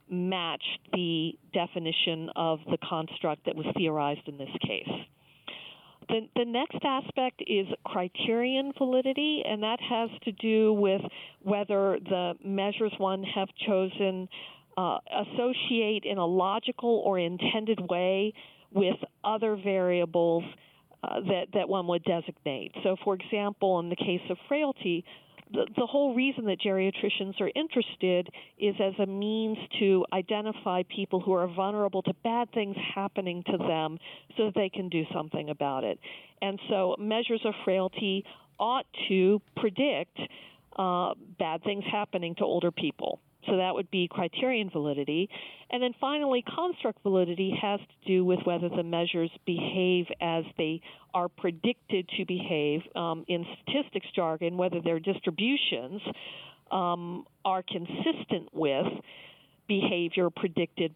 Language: English